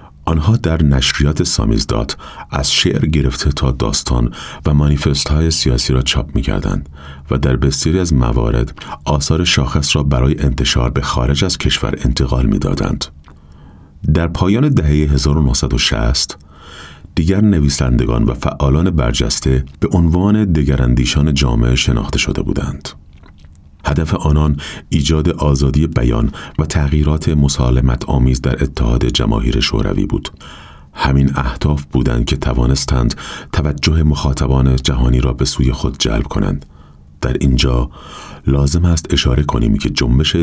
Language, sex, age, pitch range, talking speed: Persian, male, 30-49, 65-75 Hz, 125 wpm